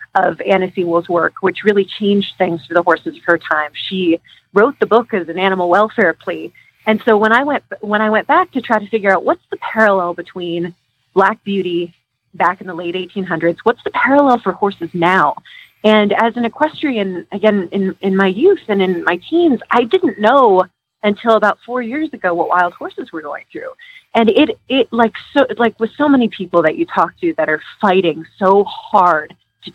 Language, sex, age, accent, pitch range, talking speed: English, female, 30-49, American, 175-230 Hz, 205 wpm